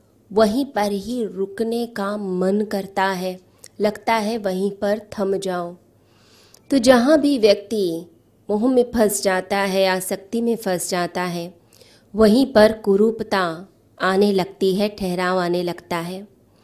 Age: 20-39